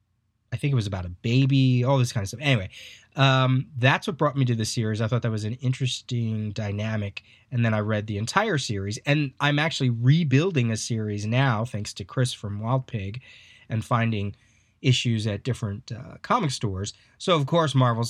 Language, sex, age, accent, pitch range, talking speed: English, male, 30-49, American, 105-130 Hz, 200 wpm